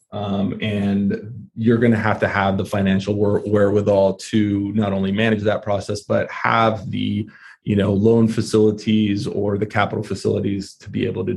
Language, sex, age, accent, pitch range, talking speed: English, male, 30-49, American, 105-120 Hz, 175 wpm